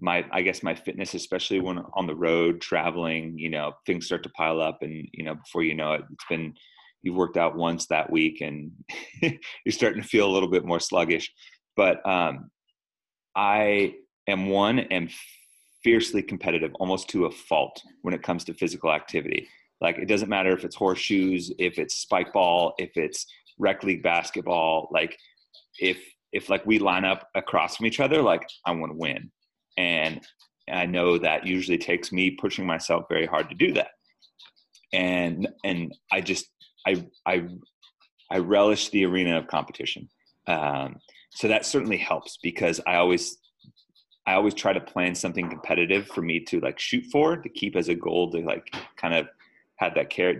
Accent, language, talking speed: American, English, 180 wpm